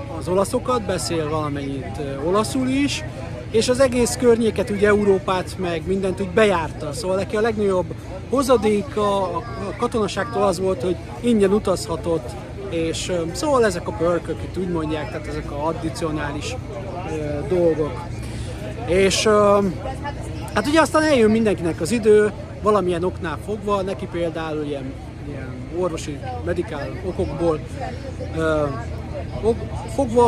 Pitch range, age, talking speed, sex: 145-195 Hz, 30-49, 120 wpm, male